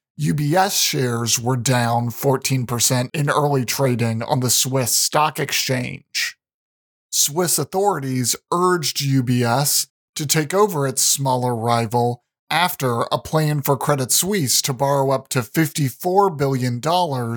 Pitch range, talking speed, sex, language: 130-160 Hz, 120 wpm, male, English